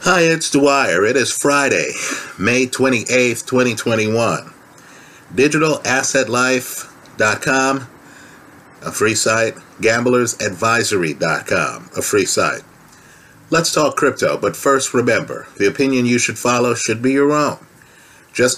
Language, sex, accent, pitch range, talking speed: English, male, American, 115-140 Hz, 105 wpm